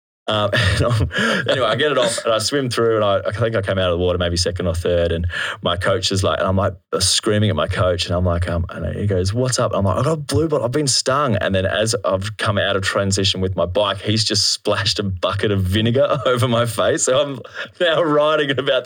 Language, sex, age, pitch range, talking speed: English, male, 20-39, 95-115 Hz, 275 wpm